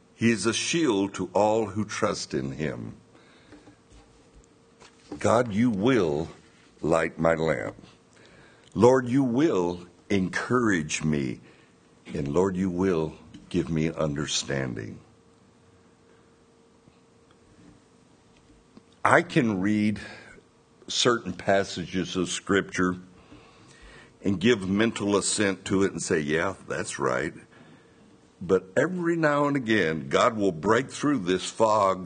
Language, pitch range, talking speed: English, 90-115 Hz, 105 wpm